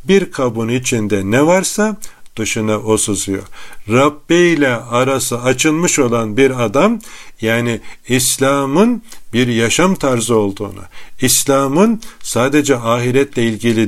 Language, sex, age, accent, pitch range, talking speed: Turkish, male, 50-69, native, 115-150 Hz, 100 wpm